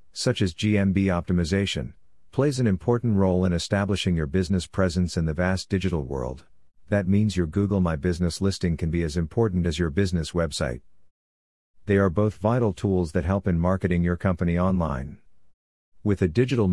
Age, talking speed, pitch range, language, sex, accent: 50-69, 170 wpm, 85-100 Hz, English, male, American